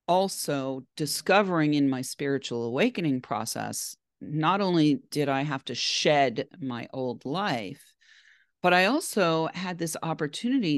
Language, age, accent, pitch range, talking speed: English, 40-59, American, 130-175 Hz, 130 wpm